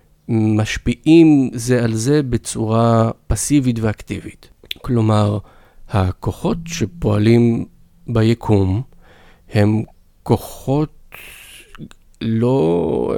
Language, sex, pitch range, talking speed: Hebrew, male, 105-125 Hz, 65 wpm